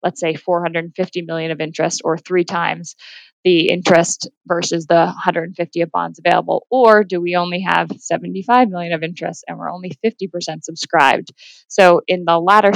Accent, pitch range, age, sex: American, 165-180 Hz, 20-39, female